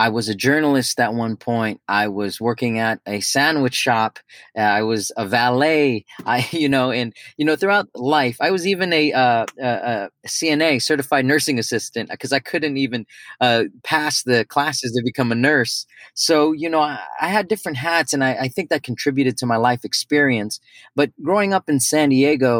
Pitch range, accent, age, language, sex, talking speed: 120-155 Hz, American, 30-49, English, male, 195 wpm